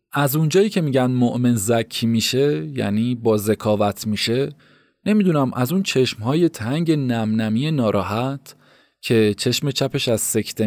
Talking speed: 130 wpm